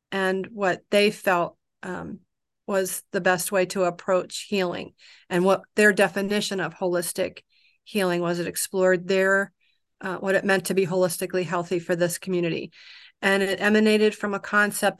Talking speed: 160 wpm